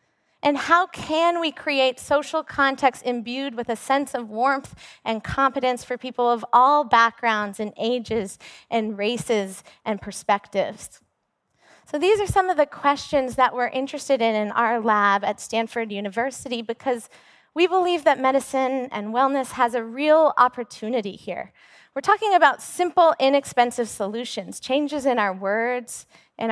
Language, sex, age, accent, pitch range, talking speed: English, female, 20-39, American, 225-295 Hz, 150 wpm